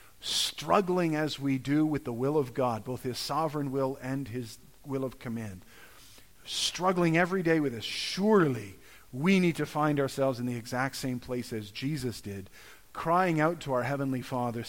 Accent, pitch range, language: American, 120-160 Hz, English